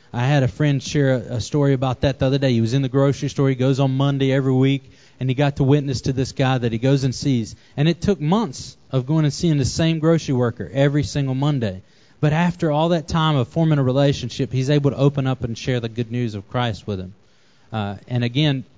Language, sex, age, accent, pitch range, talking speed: English, male, 30-49, American, 120-145 Hz, 250 wpm